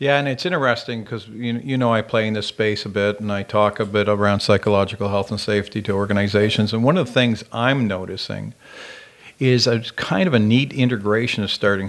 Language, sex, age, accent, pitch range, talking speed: English, male, 50-69, American, 100-115 Hz, 210 wpm